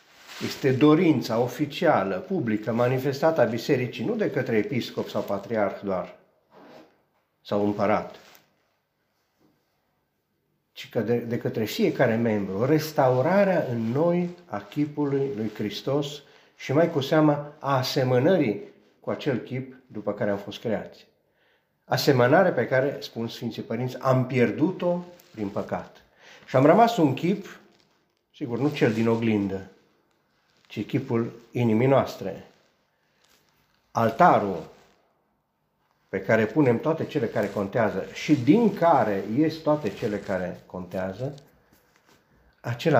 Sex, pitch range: male, 110-150 Hz